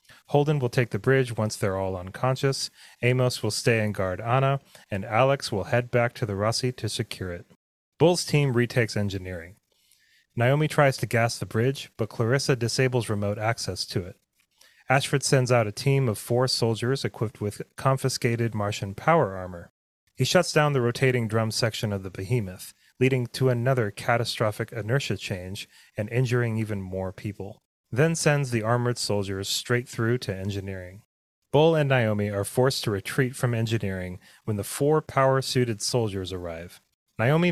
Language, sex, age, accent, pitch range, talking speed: English, male, 30-49, American, 105-130 Hz, 165 wpm